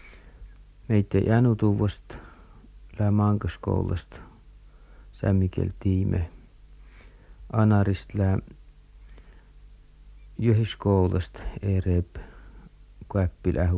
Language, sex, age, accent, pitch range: Finnish, male, 60-79, native, 90-105 Hz